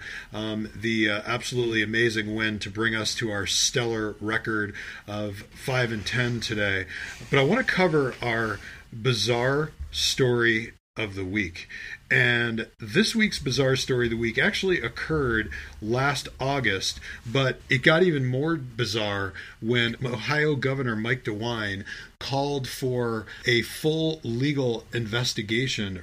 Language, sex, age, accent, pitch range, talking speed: English, male, 40-59, American, 105-135 Hz, 130 wpm